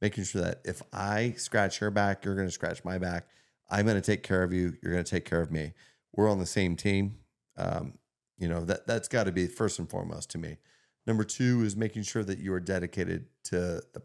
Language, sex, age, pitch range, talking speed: English, male, 30-49, 85-105 Hz, 245 wpm